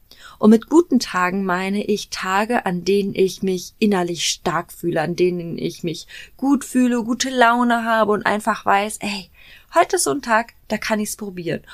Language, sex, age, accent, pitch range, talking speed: German, female, 20-39, German, 175-225 Hz, 185 wpm